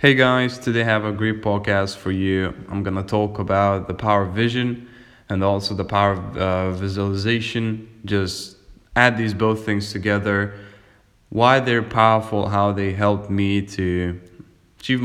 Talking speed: 160 wpm